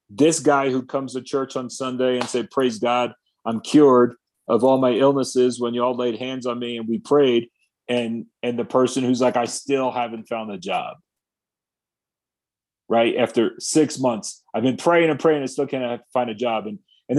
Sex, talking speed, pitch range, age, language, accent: male, 195 wpm, 120-145 Hz, 40-59, English, American